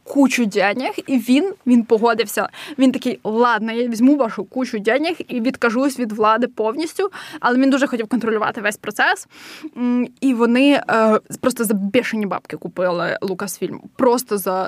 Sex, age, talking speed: female, 20-39, 145 wpm